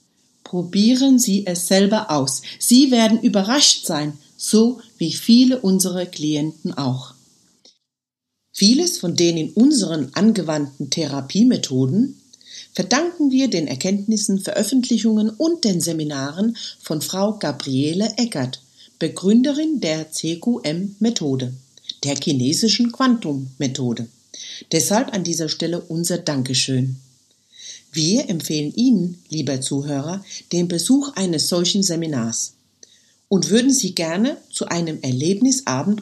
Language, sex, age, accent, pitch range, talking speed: German, female, 60-79, German, 145-230 Hz, 105 wpm